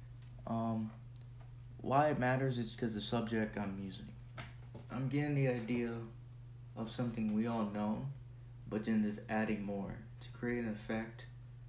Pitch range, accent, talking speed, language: 110-120 Hz, American, 145 wpm, English